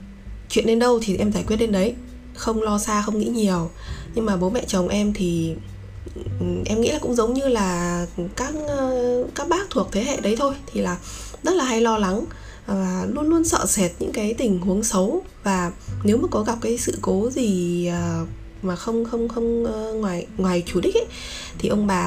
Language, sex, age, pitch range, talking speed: Vietnamese, female, 20-39, 180-235 Hz, 205 wpm